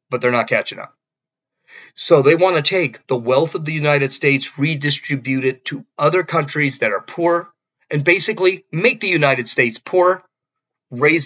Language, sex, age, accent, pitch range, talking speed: English, male, 40-59, American, 130-165 Hz, 170 wpm